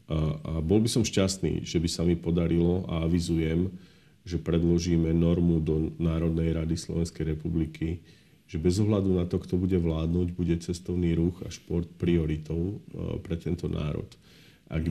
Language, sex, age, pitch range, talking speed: Slovak, male, 50-69, 85-95 Hz, 155 wpm